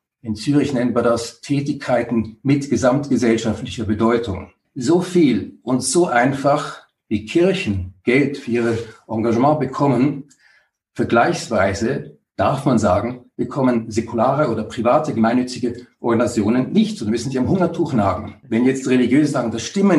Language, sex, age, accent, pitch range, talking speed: German, male, 50-69, German, 115-150 Hz, 135 wpm